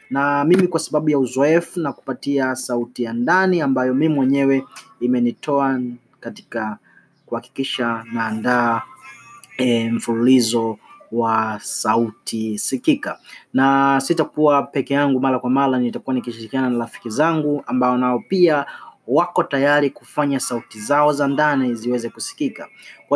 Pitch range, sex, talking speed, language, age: 130-180 Hz, male, 120 wpm, Swahili, 30-49